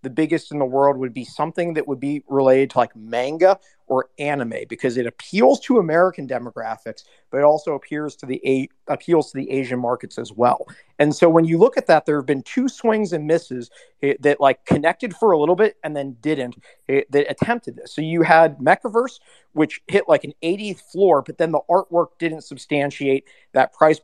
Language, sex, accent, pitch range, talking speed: English, male, American, 135-175 Hz, 210 wpm